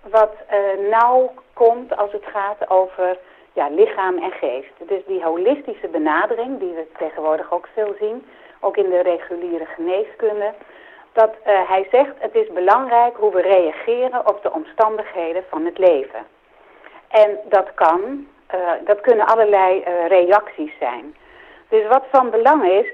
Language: Dutch